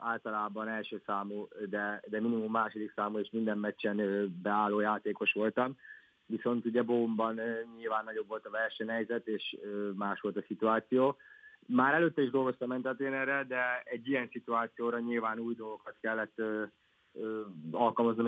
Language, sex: Hungarian, male